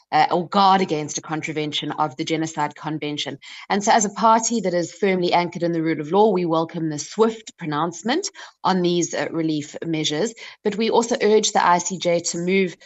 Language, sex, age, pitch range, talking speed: English, female, 20-39, 155-190 Hz, 195 wpm